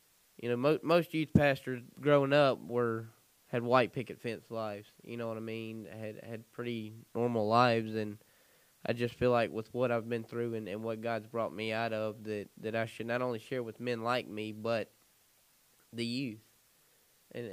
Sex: male